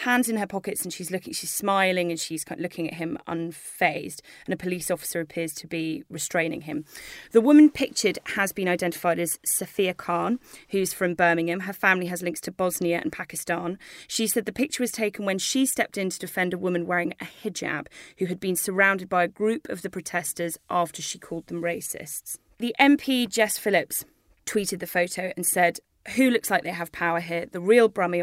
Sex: female